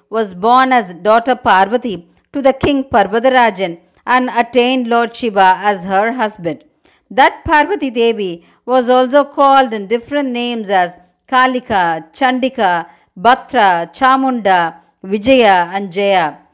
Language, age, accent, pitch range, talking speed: Tamil, 50-69, native, 205-270 Hz, 120 wpm